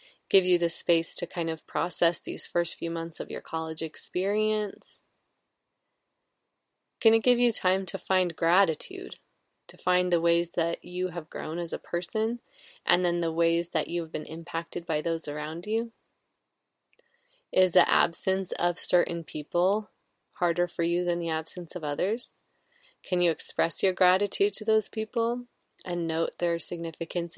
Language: English